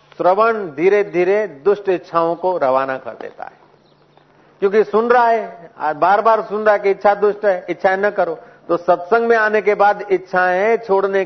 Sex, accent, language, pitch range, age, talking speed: male, native, Hindi, 185-225 Hz, 50-69, 180 wpm